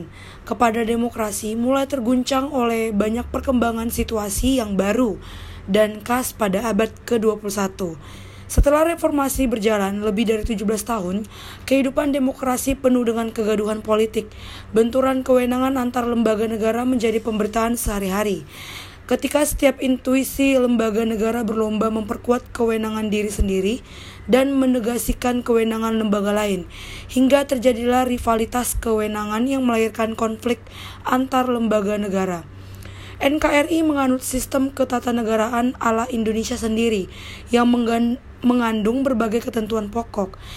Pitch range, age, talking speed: 220-255 Hz, 20-39, 110 wpm